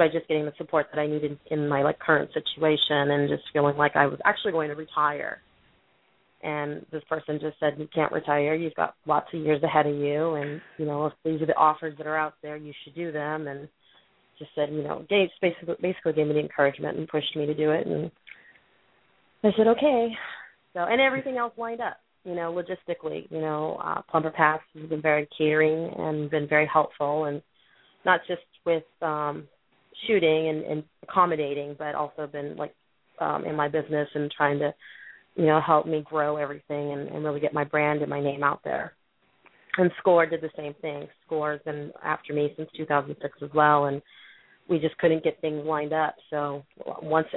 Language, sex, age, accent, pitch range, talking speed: English, female, 30-49, American, 150-160 Hz, 205 wpm